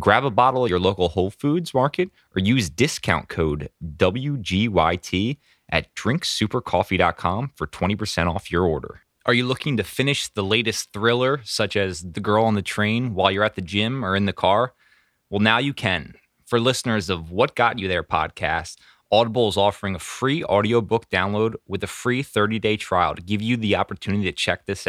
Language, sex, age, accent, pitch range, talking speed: English, male, 20-39, American, 95-120 Hz, 185 wpm